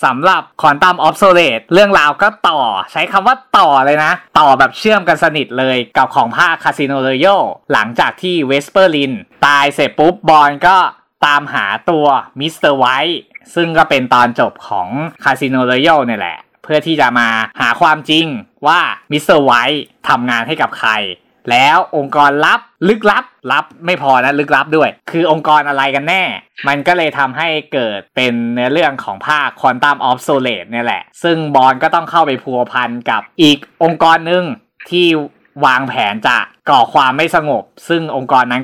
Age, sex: 20-39, male